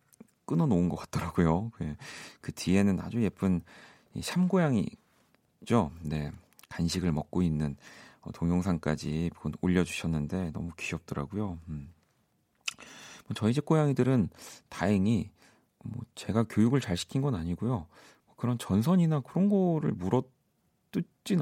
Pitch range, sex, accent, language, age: 85-125 Hz, male, native, Korean, 40-59